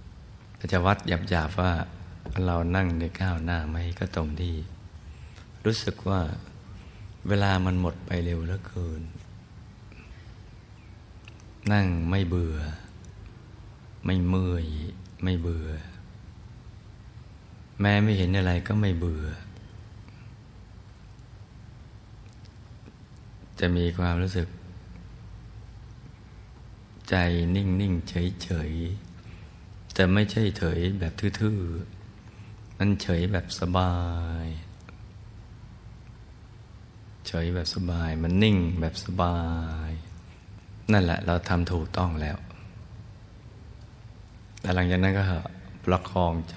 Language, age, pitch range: Thai, 60-79, 85-105 Hz